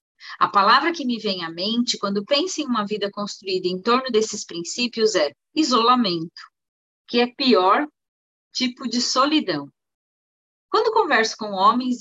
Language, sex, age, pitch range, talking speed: Portuguese, female, 30-49, 200-285 Hz, 145 wpm